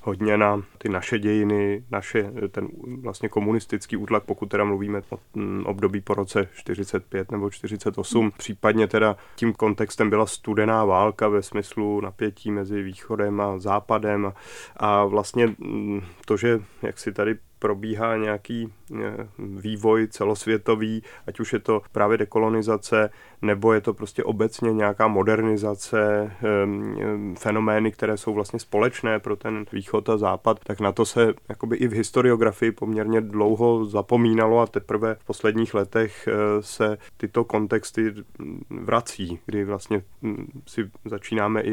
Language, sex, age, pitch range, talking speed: Czech, male, 30-49, 105-110 Hz, 130 wpm